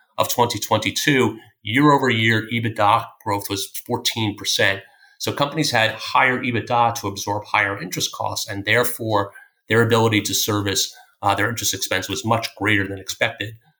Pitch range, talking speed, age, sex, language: 100-120 Hz, 145 wpm, 30-49, male, English